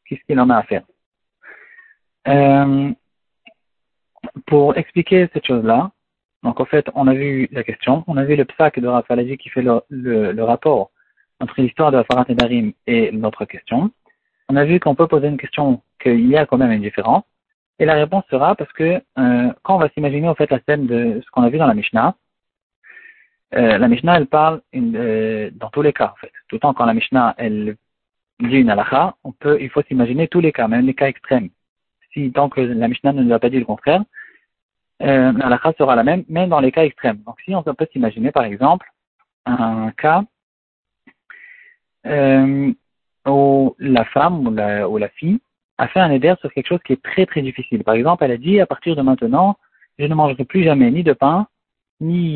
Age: 40-59